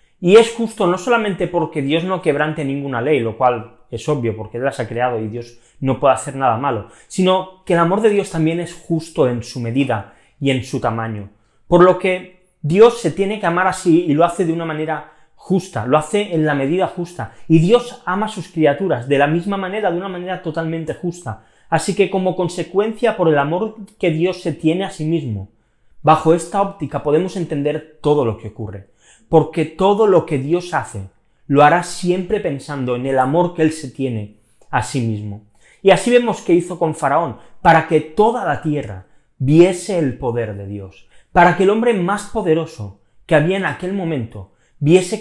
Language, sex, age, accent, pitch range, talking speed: Spanish, male, 30-49, Spanish, 125-180 Hz, 200 wpm